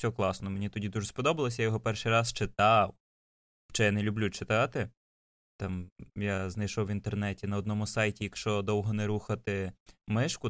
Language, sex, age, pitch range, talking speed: Ukrainian, male, 20-39, 105-130 Hz, 160 wpm